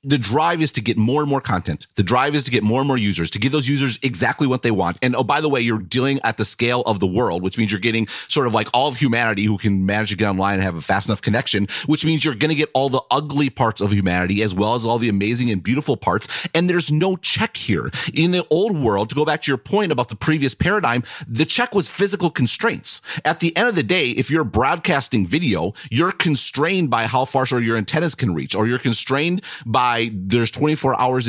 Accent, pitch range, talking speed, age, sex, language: American, 115-155 Hz, 255 wpm, 30-49, male, German